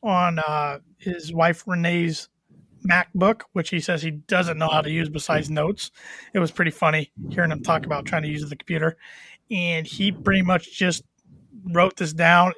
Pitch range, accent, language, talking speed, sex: 160-180 Hz, American, English, 180 wpm, male